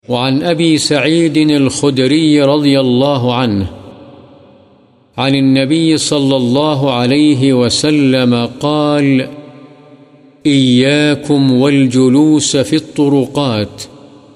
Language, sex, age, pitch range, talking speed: Urdu, male, 50-69, 130-145 Hz, 75 wpm